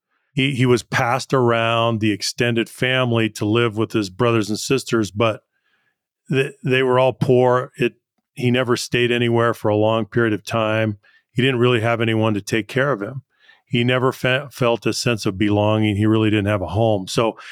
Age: 40-59